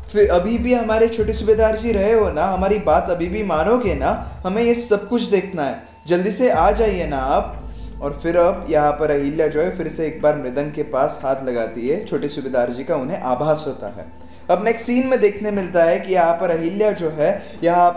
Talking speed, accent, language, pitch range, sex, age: 225 wpm, native, Hindi, 145-195 Hz, male, 20-39